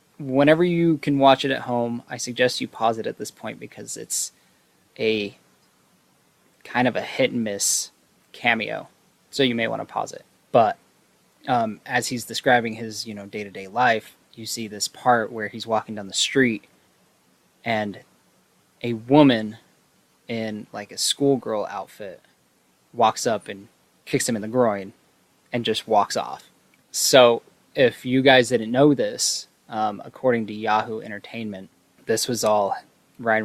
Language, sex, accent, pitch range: English, male, American, 105-125 Hz